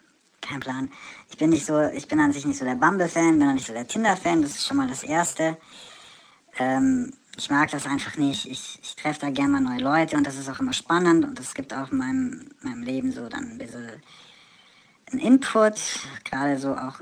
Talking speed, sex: 220 wpm, male